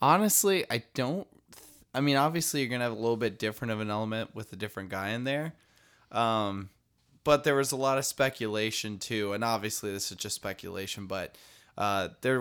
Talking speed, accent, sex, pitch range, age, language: 200 wpm, American, male, 100-125 Hz, 20-39, English